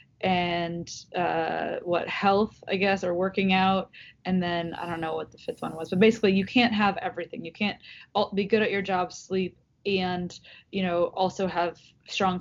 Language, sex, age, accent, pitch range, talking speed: English, female, 20-39, American, 180-220 Hz, 190 wpm